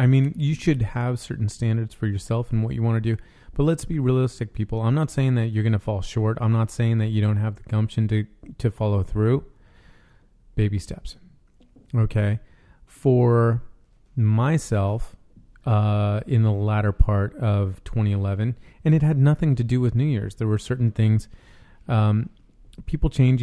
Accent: American